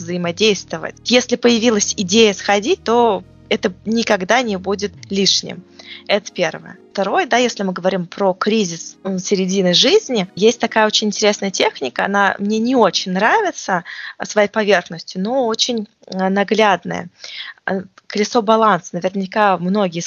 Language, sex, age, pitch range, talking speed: Russian, female, 20-39, 190-235 Hz, 125 wpm